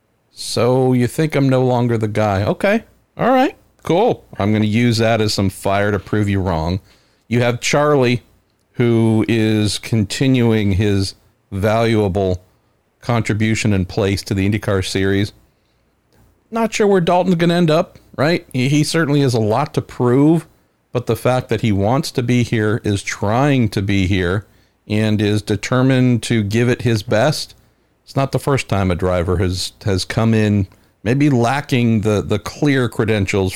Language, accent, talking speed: English, American, 170 wpm